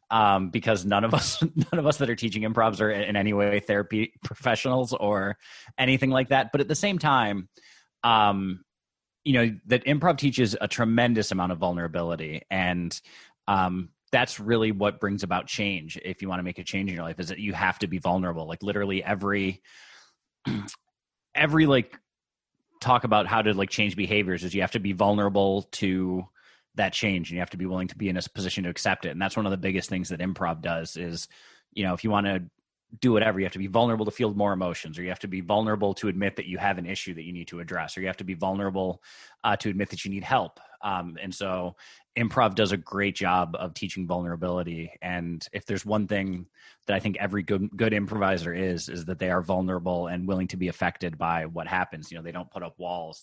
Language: English